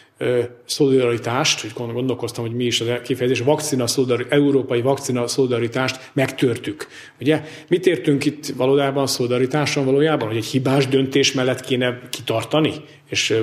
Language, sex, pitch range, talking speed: Hungarian, male, 120-145 Hz, 125 wpm